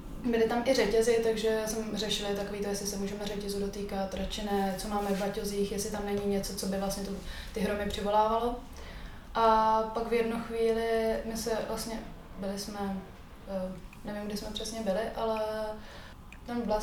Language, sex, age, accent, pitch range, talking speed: Czech, female, 20-39, native, 195-220 Hz, 170 wpm